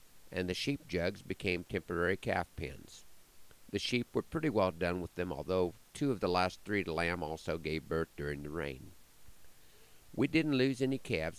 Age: 50-69